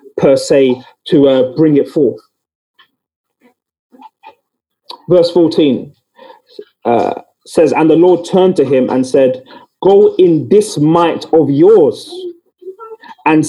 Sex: male